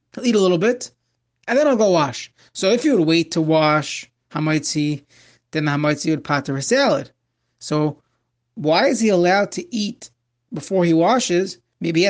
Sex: male